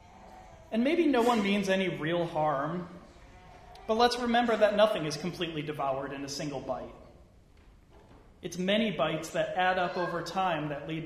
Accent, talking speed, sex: American, 165 wpm, male